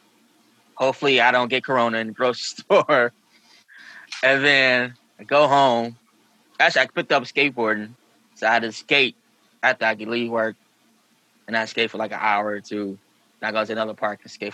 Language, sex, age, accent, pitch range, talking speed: English, male, 10-29, American, 105-130 Hz, 190 wpm